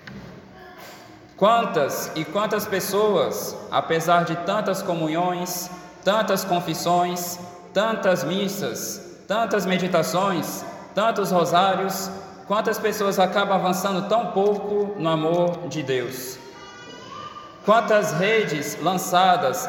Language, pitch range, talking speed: Portuguese, 170-200 Hz, 90 wpm